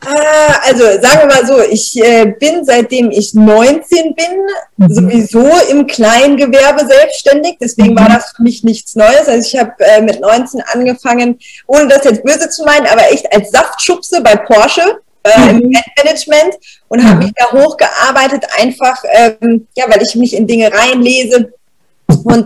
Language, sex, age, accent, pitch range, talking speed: German, female, 20-39, German, 225-285 Hz, 155 wpm